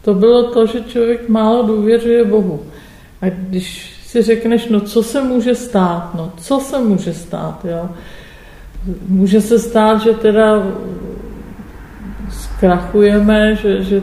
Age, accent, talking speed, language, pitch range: 50-69, native, 135 wpm, Czech, 185-215 Hz